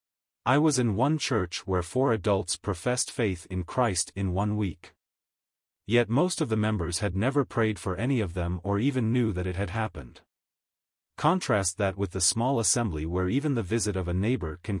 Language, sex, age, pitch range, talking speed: English, male, 30-49, 90-120 Hz, 195 wpm